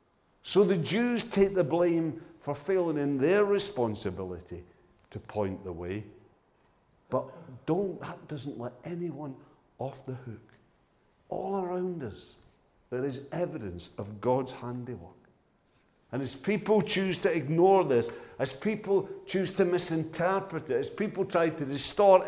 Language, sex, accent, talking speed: English, male, British, 135 wpm